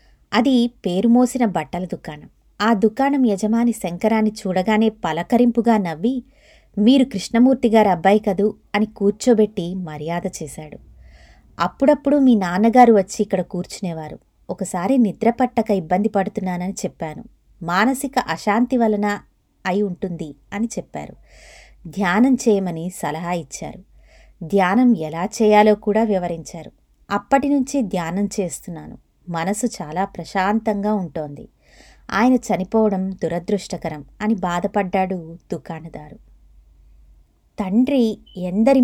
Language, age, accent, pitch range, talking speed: Telugu, 20-39, native, 180-235 Hz, 95 wpm